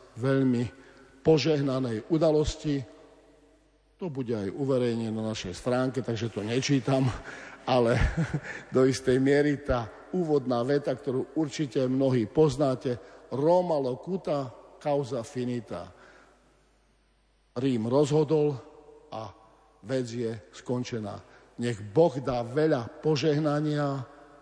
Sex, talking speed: male, 95 wpm